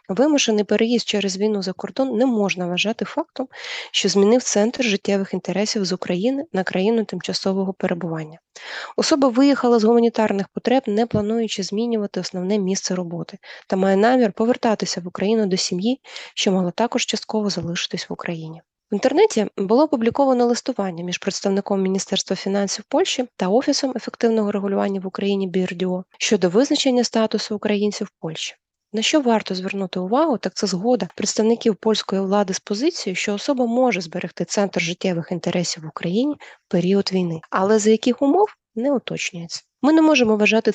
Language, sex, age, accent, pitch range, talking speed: Ukrainian, female, 20-39, native, 190-240 Hz, 155 wpm